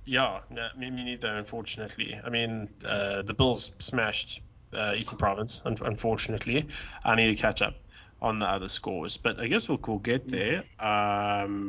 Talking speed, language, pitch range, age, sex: 175 wpm, English, 100-120 Hz, 20-39, male